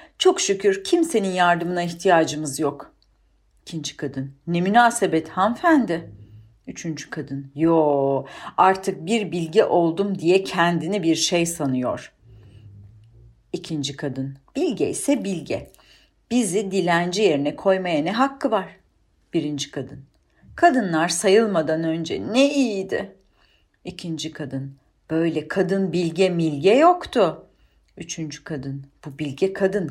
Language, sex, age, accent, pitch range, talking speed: Turkish, female, 40-59, native, 145-230 Hz, 110 wpm